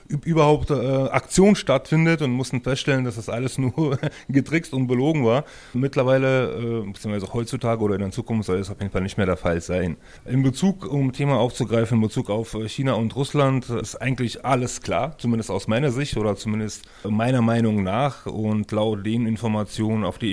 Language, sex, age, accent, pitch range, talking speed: German, male, 30-49, German, 110-130 Hz, 185 wpm